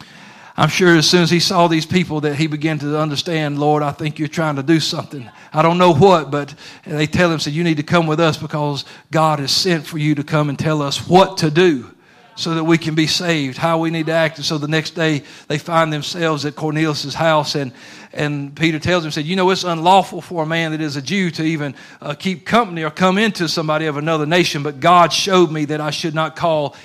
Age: 40-59